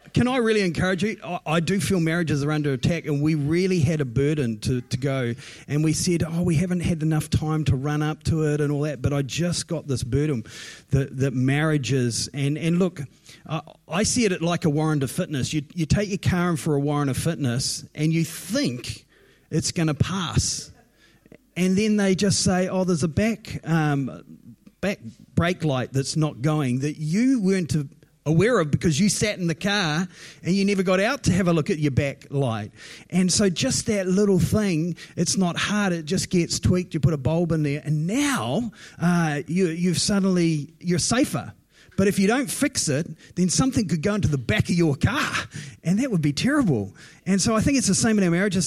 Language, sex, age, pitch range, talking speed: English, male, 30-49, 140-185 Hz, 215 wpm